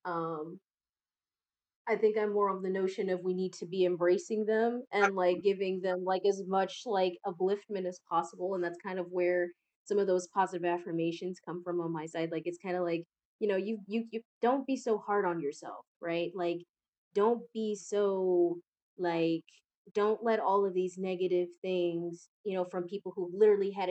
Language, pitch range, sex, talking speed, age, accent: English, 165-190 Hz, female, 195 wpm, 20-39, American